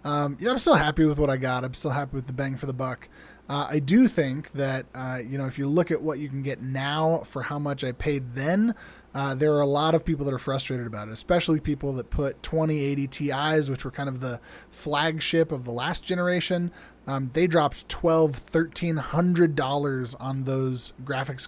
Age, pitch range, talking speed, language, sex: 20-39, 135-160 Hz, 225 wpm, English, male